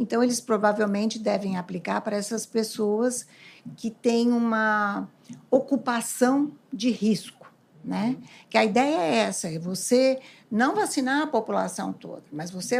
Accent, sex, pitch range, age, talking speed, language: Brazilian, female, 215-265 Hz, 60-79, 135 wpm, Portuguese